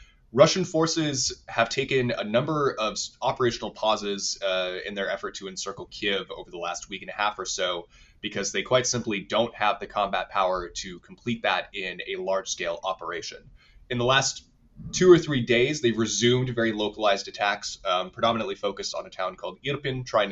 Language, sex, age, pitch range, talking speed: English, male, 20-39, 100-130 Hz, 185 wpm